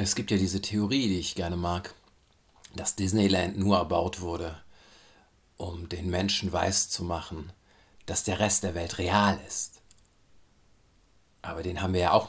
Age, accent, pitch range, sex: 50-69, German, 85-105 Hz, male